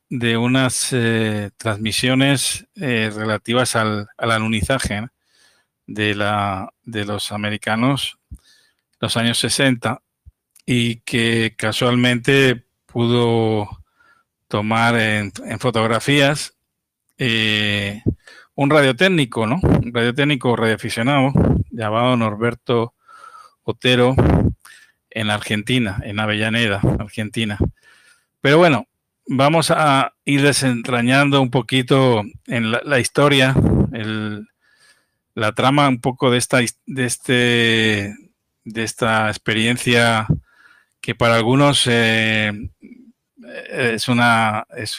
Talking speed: 95 wpm